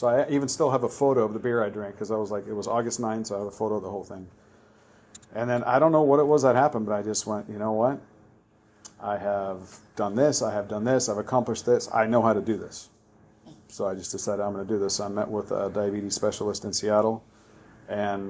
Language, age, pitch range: English, 40-59, 105-110 Hz